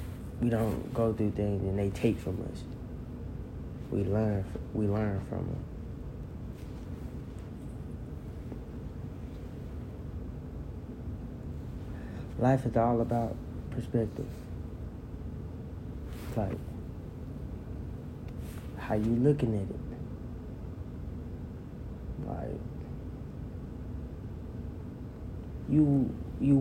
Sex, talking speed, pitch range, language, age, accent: male, 70 wpm, 105-125 Hz, English, 30-49, American